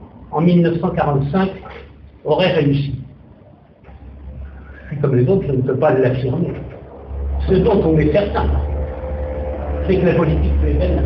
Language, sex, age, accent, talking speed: French, male, 60-79, French, 130 wpm